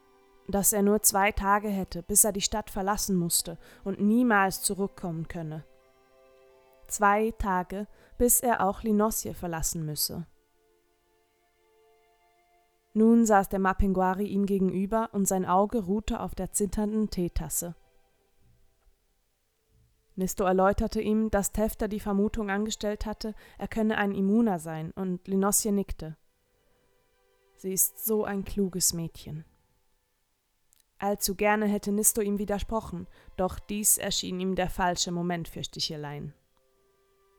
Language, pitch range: German, 160-210 Hz